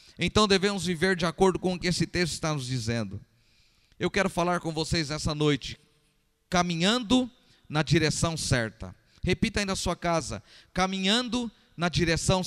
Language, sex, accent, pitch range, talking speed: Portuguese, male, Brazilian, 155-215 Hz, 155 wpm